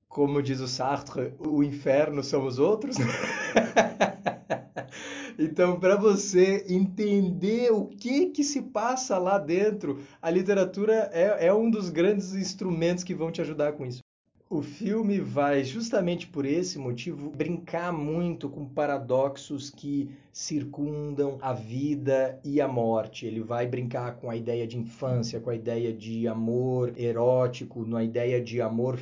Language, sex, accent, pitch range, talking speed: Portuguese, male, Brazilian, 125-180 Hz, 145 wpm